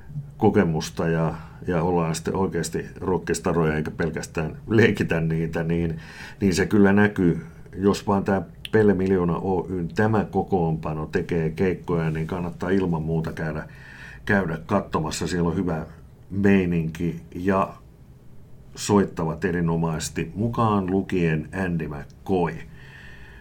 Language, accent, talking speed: Finnish, native, 115 wpm